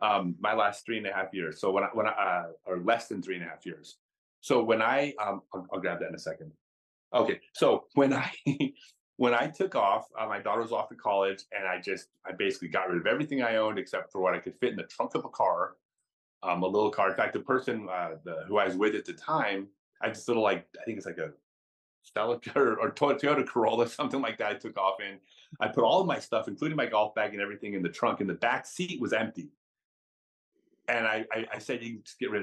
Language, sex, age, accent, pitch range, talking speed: English, male, 30-49, American, 95-140 Hz, 260 wpm